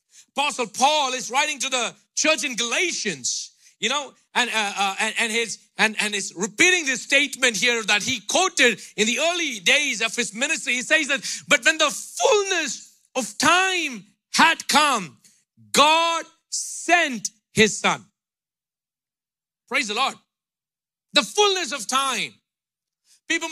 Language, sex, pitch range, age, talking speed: English, male, 220-320 Hz, 50-69, 145 wpm